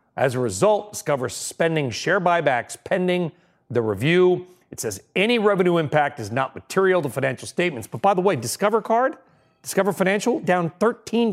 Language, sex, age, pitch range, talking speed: English, male, 40-59, 150-200 Hz, 165 wpm